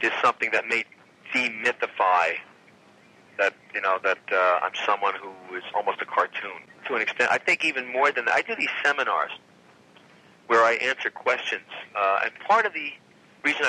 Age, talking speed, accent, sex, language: 50-69, 175 wpm, American, male, English